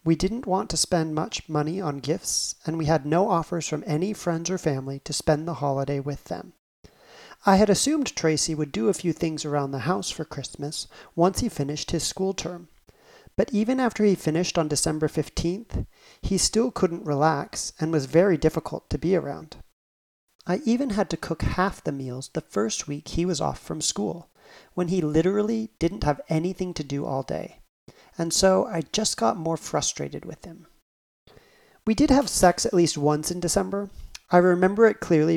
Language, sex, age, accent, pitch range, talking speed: English, male, 40-59, American, 145-190 Hz, 190 wpm